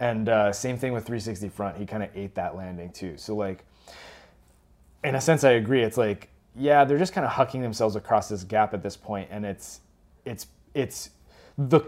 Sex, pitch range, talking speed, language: male, 100-130 Hz, 205 wpm, English